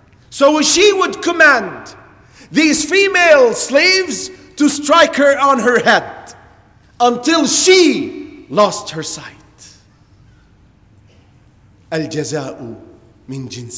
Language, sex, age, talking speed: English, male, 40-59, 85 wpm